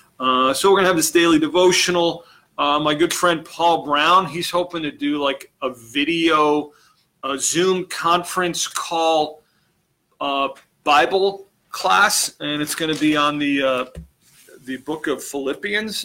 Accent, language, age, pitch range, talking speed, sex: American, English, 40-59, 140-165 Hz, 145 wpm, male